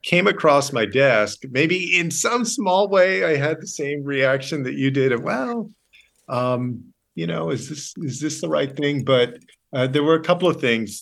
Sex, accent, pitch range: male, American, 105-130 Hz